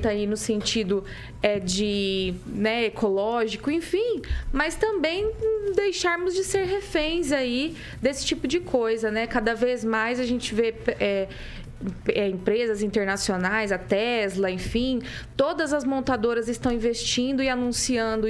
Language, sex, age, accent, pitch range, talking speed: Portuguese, female, 20-39, Brazilian, 230-315 Hz, 130 wpm